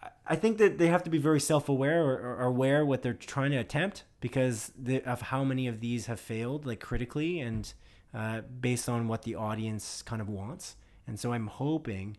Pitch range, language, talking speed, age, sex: 110-145 Hz, English, 195 wpm, 20-39, male